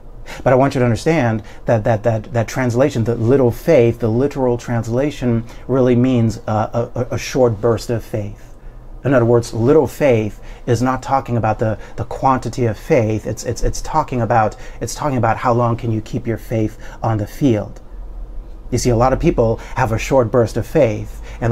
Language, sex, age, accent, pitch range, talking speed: English, male, 40-59, American, 115-130 Hz, 200 wpm